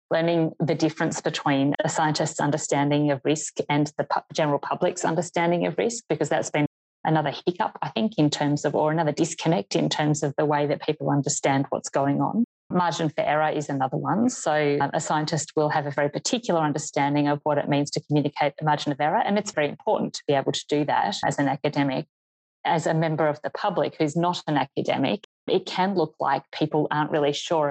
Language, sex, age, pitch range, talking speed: English, female, 30-49, 145-160 Hz, 210 wpm